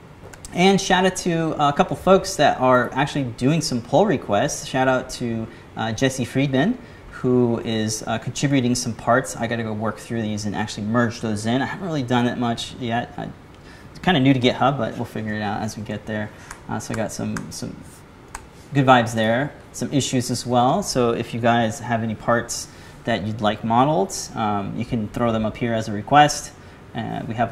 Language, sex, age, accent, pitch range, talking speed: English, male, 30-49, American, 110-145 Hz, 215 wpm